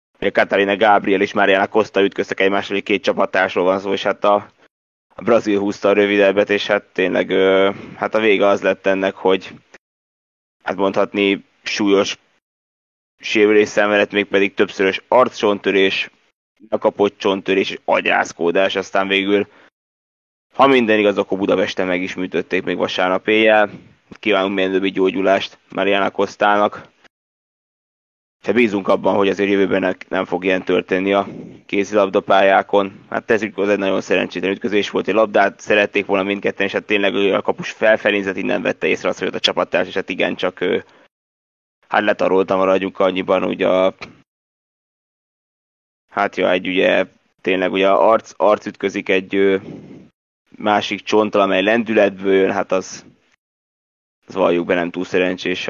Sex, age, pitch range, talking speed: male, 20-39, 95-100 Hz, 145 wpm